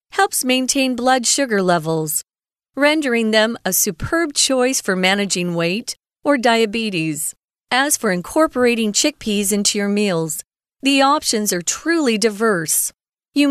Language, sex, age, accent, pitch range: Chinese, female, 40-59, American, 195-265 Hz